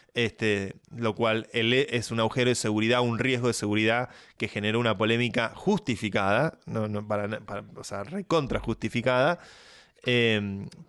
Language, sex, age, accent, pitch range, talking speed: Spanish, male, 20-39, Argentinian, 110-140 Hz, 145 wpm